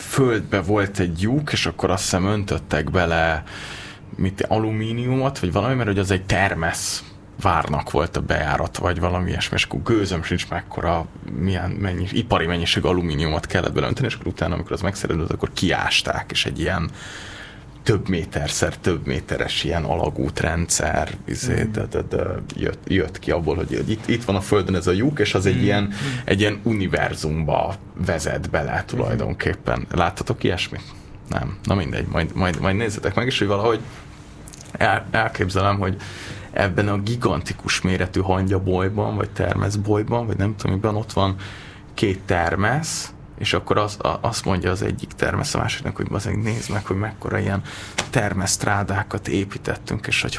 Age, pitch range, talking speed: 20-39, 95-105 Hz, 155 wpm